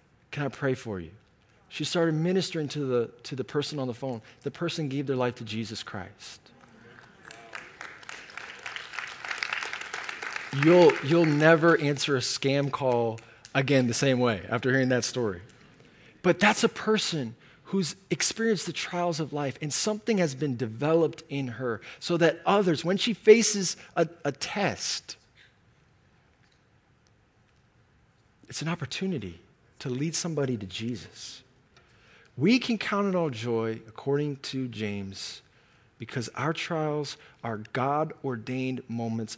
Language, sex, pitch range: English, male, 120-165 Hz